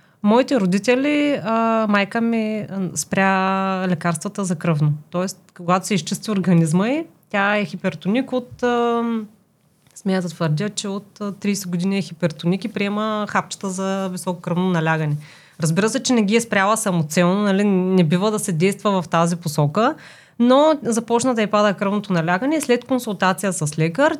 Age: 30-49